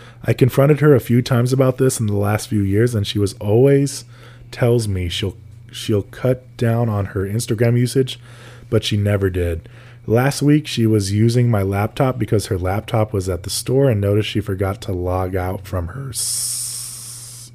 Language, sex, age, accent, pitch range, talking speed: English, male, 20-39, American, 100-120 Hz, 190 wpm